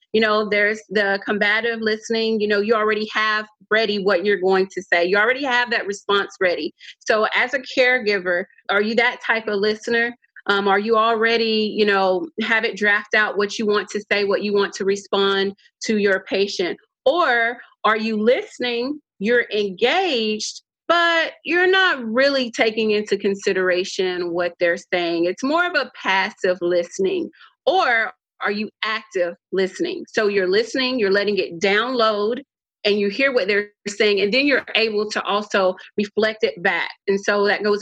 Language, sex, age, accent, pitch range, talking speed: English, female, 30-49, American, 195-235 Hz, 175 wpm